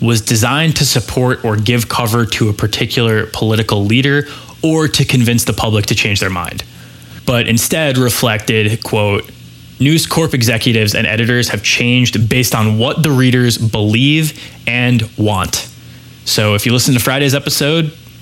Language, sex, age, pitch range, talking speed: English, male, 20-39, 110-130 Hz, 155 wpm